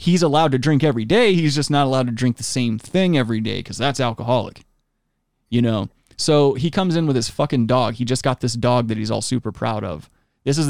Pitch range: 115-140 Hz